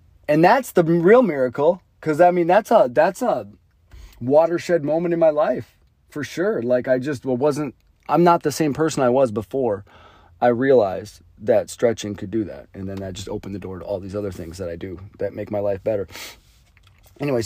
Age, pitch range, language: 40-59, 100-130 Hz, English